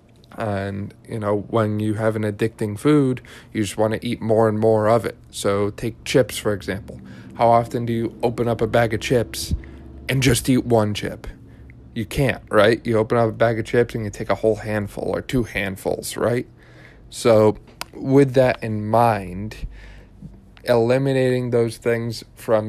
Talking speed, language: 180 wpm, English